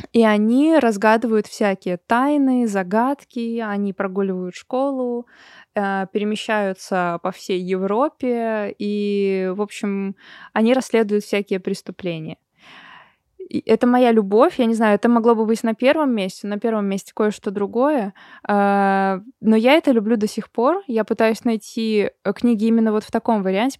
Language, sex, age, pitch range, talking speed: Russian, female, 20-39, 195-235 Hz, 135 wpm